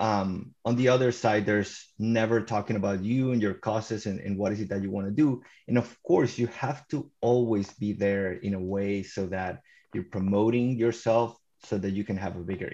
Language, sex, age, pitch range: English, male, 30-49, 100-120 Hz